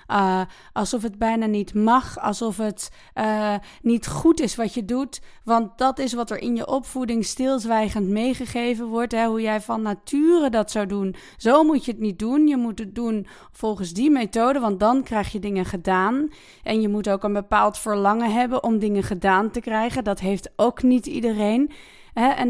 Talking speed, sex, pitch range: 190 wpm, female, 220-265 Hz